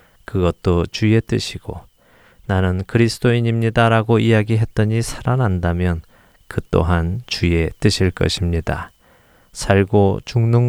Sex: male